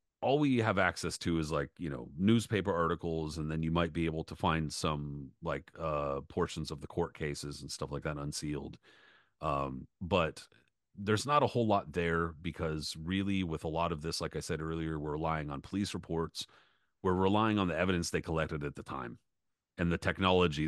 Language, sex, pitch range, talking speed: English, male, 75-90 Hz, 200 wpm